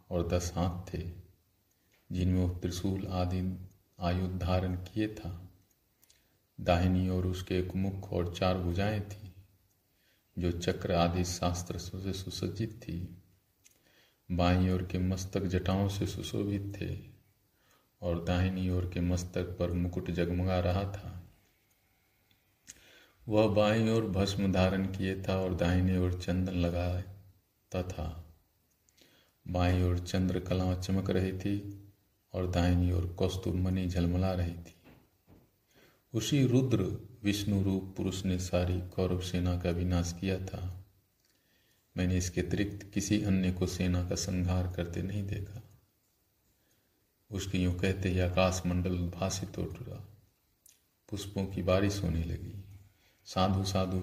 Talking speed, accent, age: 125 wpm, native, 40-59